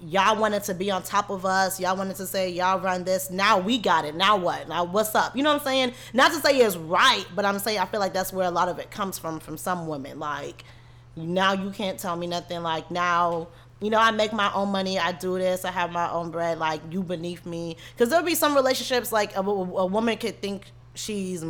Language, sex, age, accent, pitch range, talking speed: English, female, 20-39, American, 160-205 Hz, 255 wpm